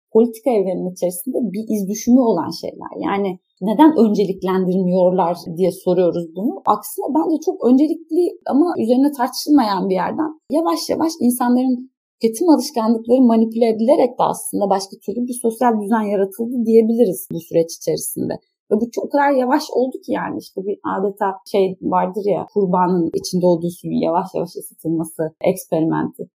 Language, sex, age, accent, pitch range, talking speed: Turkish, female, 30-49, native, 185-270 Hz, 145 wpm